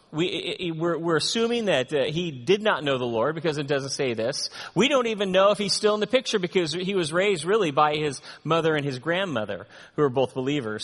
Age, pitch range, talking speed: 30-49, 140-195 Hz, 225 wpm